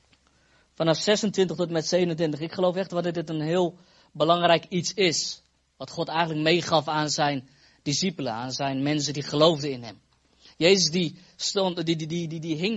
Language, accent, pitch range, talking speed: Dutch, Dutch, 150-200 Hz, 180 wpm